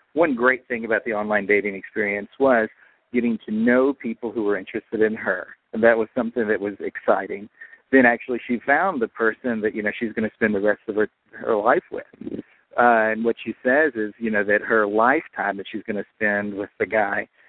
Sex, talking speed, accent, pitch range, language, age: male, 220 wpm, American, 105-125 Hz, English, 50-69